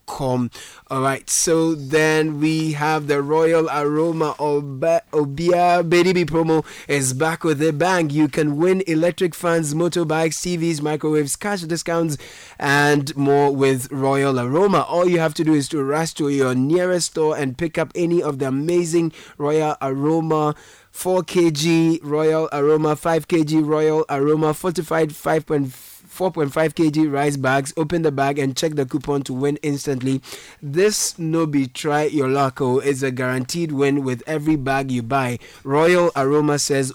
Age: 20-39